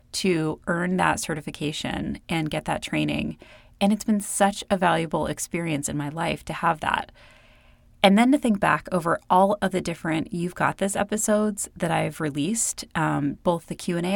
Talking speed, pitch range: 180 wpm, 155-195 Hz